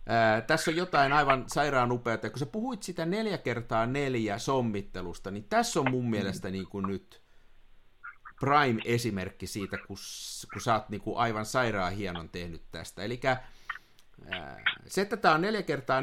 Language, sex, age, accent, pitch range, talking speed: Finnish, male, 50-69, native, 100-140 Hz, 155 wpm